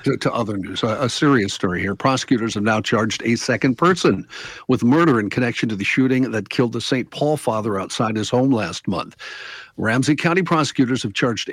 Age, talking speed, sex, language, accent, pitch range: 50-69, 200 wpm, male, English, American, 110-140 Hz